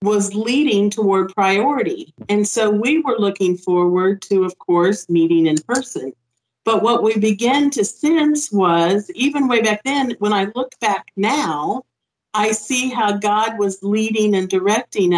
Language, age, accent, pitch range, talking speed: English, 50-69, American, 190-235 Hz, 160 wpm